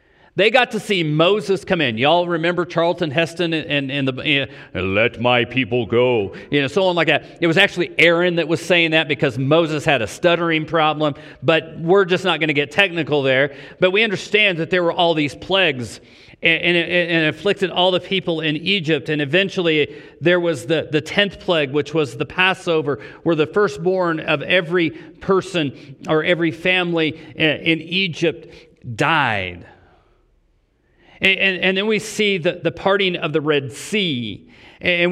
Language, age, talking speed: English, 40-59, 180 wpm